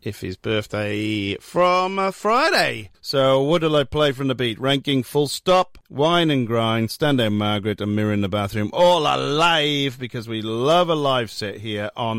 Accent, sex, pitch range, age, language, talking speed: British, male, 115-170 Hz, 40-59, English, 175 wpm